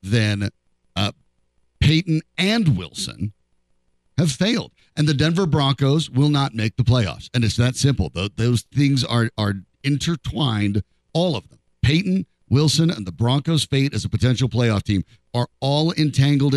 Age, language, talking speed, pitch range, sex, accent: 50-69, English, 150 wpm, 100-150 Hz, male, American